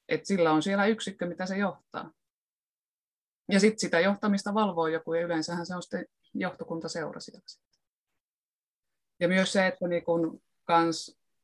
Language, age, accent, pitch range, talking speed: Finnish, 20-39, native, 155-195 Hz, 135 wpm